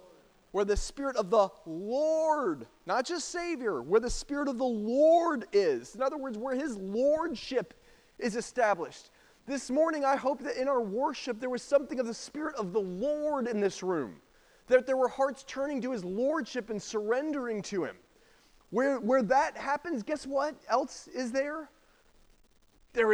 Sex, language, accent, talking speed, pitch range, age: male, English, American, 170 wpm, 220-285 Hz, 30-49